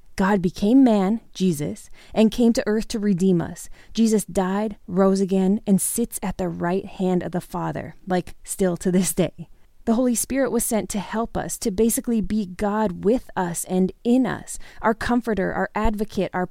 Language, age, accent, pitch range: English, 20-39, American, 190-235 Hz